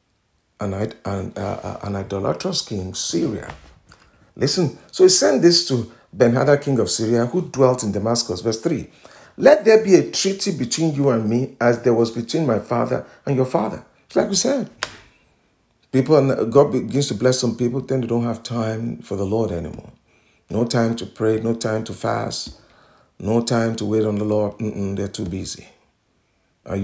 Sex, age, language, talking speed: male, 50-69, English, 185 wpm